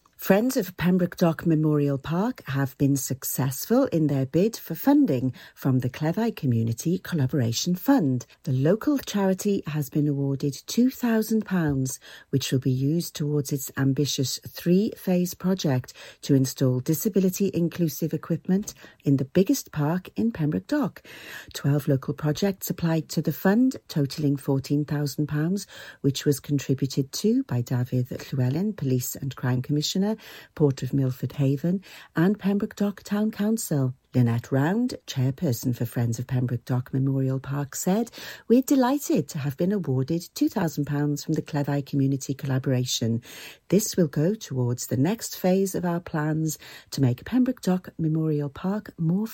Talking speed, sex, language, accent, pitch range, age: 140 wpm, female, English, British, 140-195 Hz, 40-59